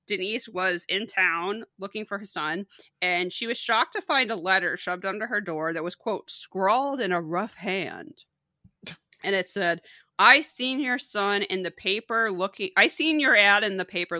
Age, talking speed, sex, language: 20-39, 195 wpm, female, English